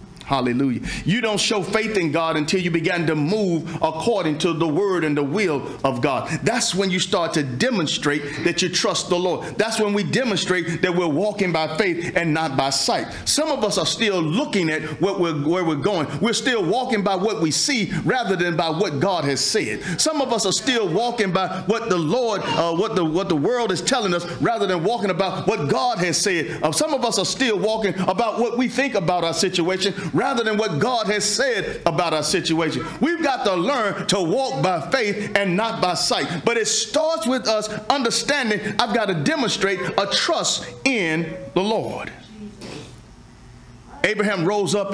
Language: English